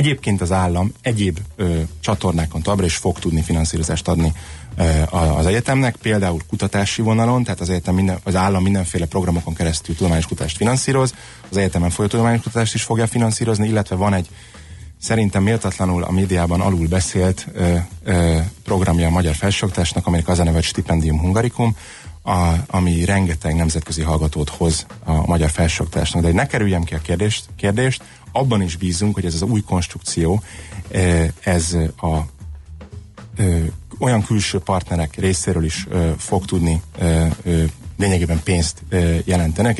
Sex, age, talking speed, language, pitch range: male, 30-49, 145 wpm, Hungarian, 80-100 Hz